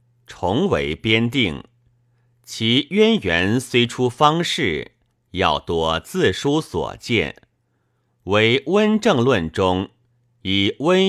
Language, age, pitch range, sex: Chinese, 50-69, 105-130 Hz, male